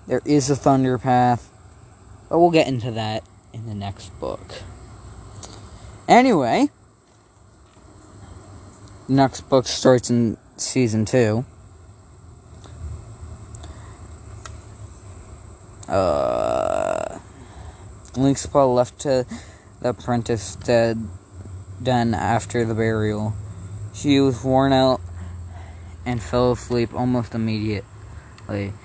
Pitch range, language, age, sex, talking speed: 95-130 Hz, English, 20-39, male, 85 wpm